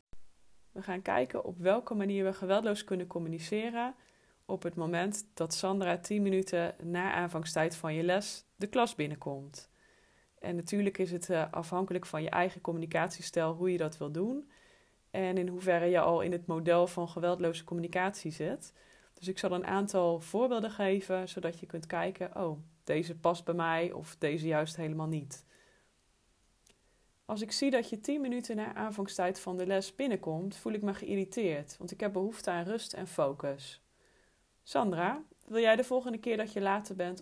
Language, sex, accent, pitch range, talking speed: Dutch, female, Dutch, 170-210 Hz, 175 wpm